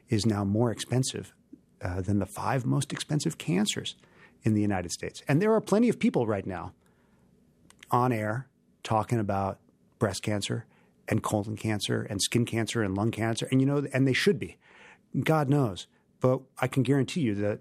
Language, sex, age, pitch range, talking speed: English, male, 40-59, 105-135 Hz, 180 wpm